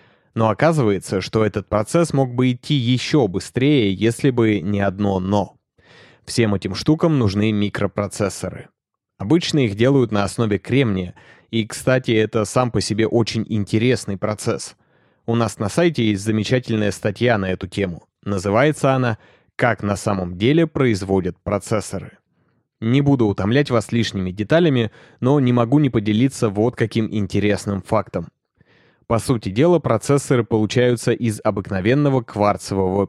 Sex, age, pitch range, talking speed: male, 20-39, 100-125 Hz, 140 wpm